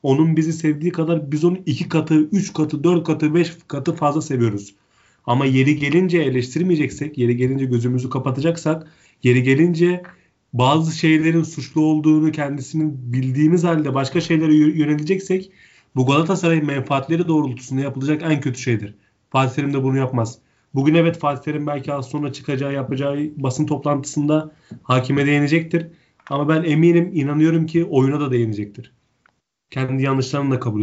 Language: Turkish